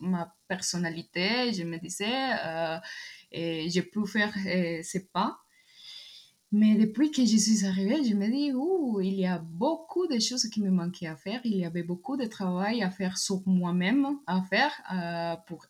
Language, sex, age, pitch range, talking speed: French, female, 20-39, 170-215 Hz, 180 wpm